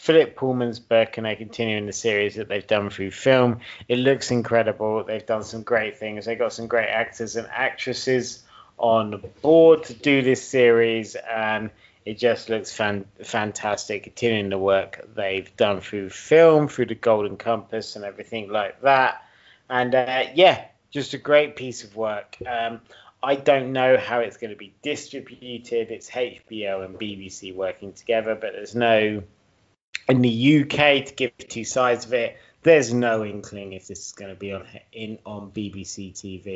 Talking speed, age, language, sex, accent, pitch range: 175 wpm, 30-49, English, male, British, 105-125 Hz